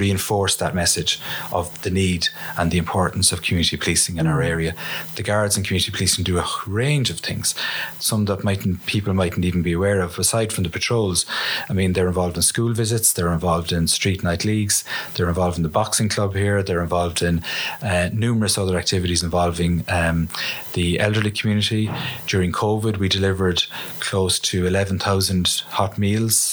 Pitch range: 90-105 Hz